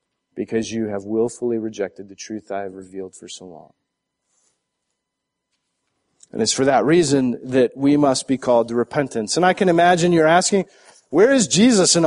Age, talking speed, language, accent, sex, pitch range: 40-59, 175 wpm, English, American, male, 115-160 Hz